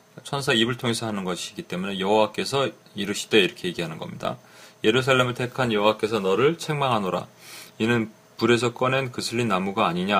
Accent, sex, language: native, male, Korean